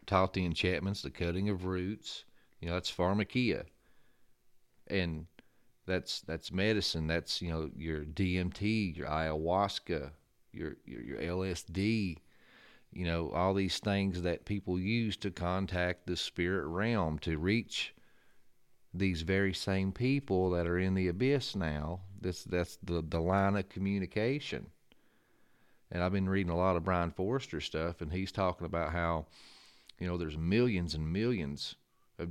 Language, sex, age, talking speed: English, male, 40-59, 150 wpm